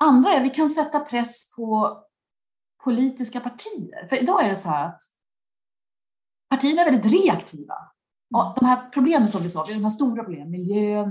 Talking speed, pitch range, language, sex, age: 180 wpm, 195-275 Hz, Swedish, female, 30-49